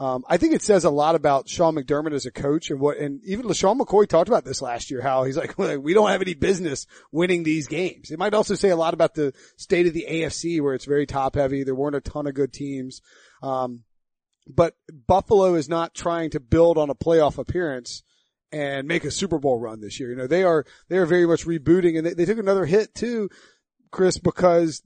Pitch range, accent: 140-170 Hz, American